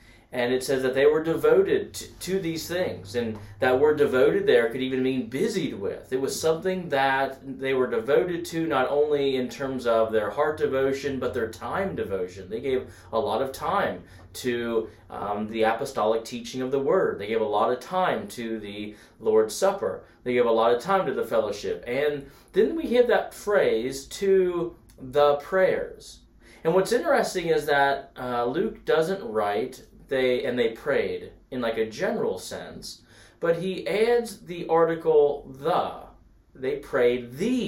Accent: American